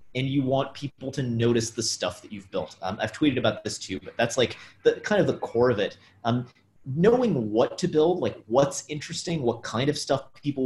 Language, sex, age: English, male, 30-49